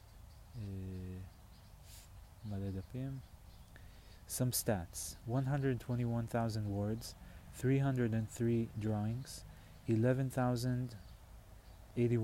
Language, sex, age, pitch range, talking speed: Hebrew, male, 30-49, 95-120 Hz, 85 wpm